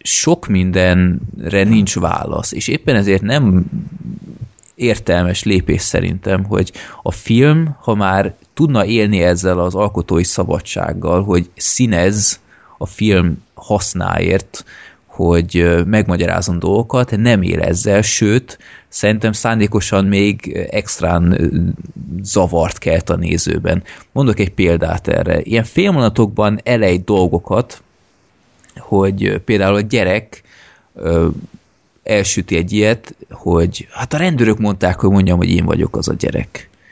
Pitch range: 90-115 Hz